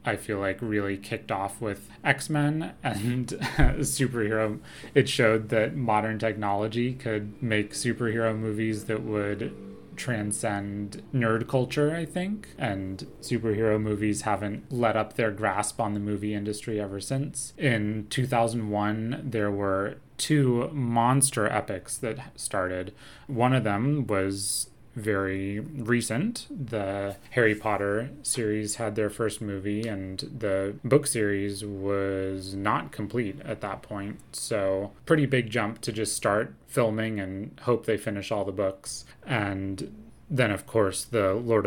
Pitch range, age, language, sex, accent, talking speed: 100-120 Hz, 20-39, English, male, American, 135 wpm